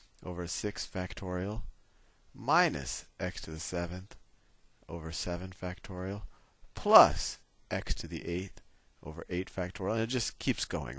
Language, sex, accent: English, male, American